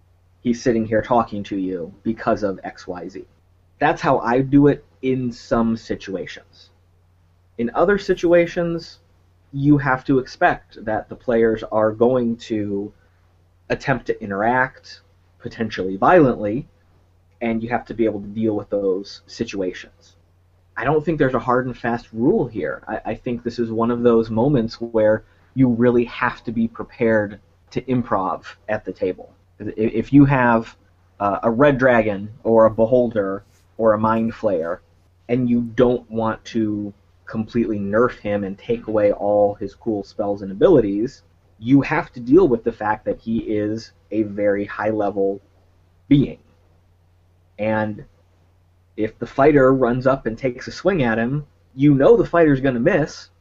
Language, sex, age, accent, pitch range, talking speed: English, male, 30-49, American, 95-120 Hz, 160 wpm